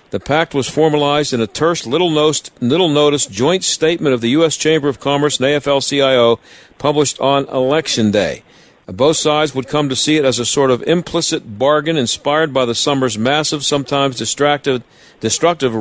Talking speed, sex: 170 wpm, male